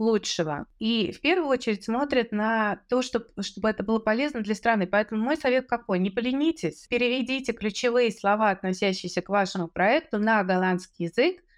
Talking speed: 160 wpm